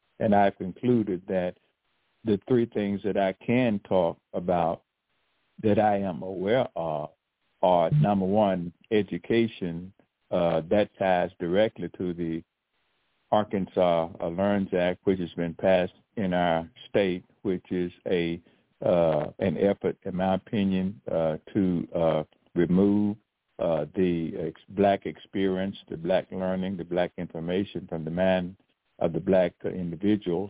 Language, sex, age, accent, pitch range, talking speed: English, male, 60-79, American, 85-100 Hz, 135 wpm